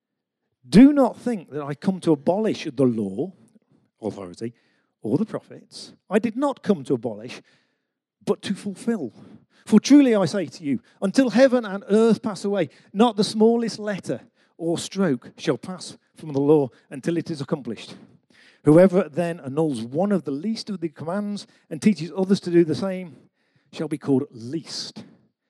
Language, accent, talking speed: English, British, 165 wpm